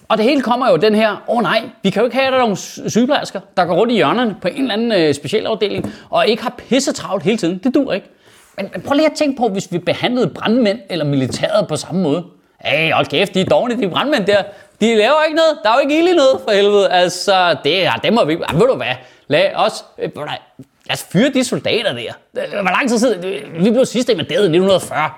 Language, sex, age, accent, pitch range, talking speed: Danish, male, 30-49, native, 175-255 Hz, 240 wpm